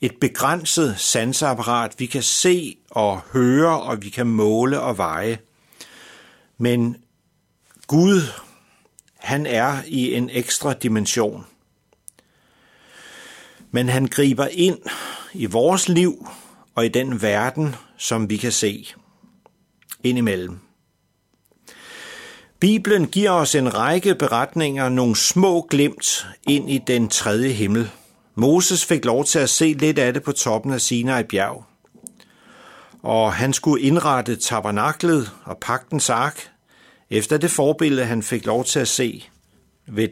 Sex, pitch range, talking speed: male, 115-155 Hz, 125 wpm